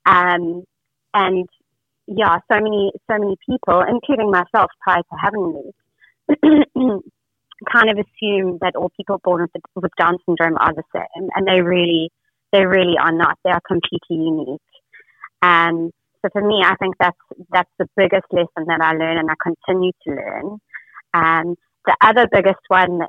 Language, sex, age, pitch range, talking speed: English, female, 30-49, 165-195 Hz, 170 wpm